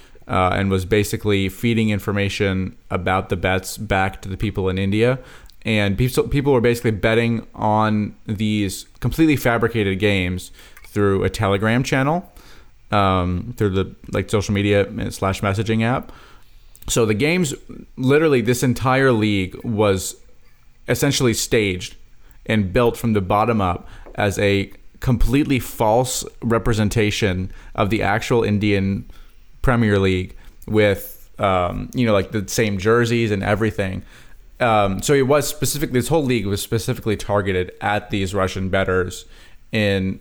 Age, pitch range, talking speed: 30-49, 95-115 Hz, 135 wpm